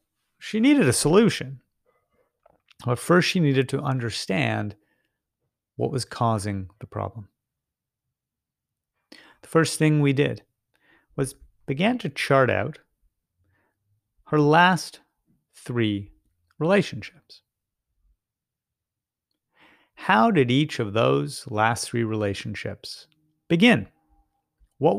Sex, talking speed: male, 95 wpm